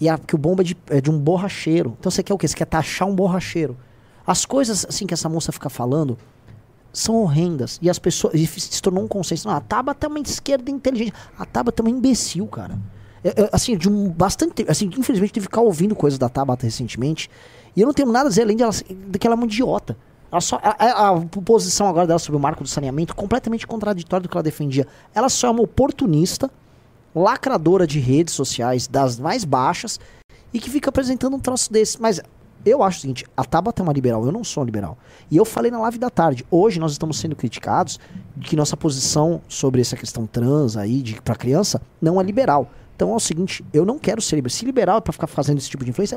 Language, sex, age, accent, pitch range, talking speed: Portuguese, male, 20-39, Brazilian, 135-220 Hz, 240 wpm